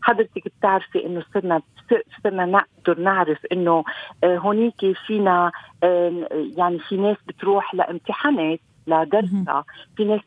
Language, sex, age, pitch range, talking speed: Arabic, female, 50-69, 170-215 Hz, 105 wpm